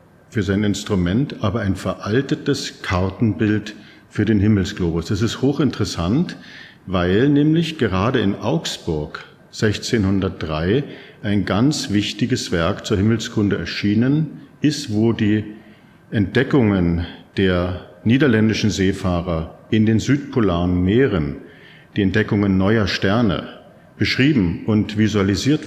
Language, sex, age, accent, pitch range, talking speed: German, male, 50-69, German, 95-120 Hz, 105 wpm